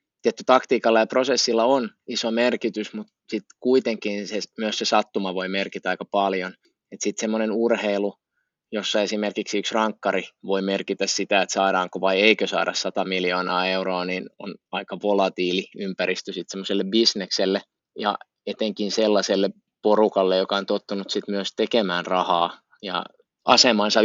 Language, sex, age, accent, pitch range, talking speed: Finnish, male, 20-39, native, 100-115 Hz, 140 wpm